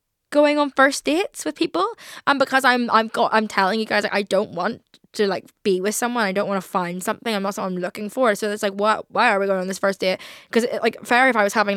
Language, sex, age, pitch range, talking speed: English, female, 10-29, 200-250 Hz, 270 wpm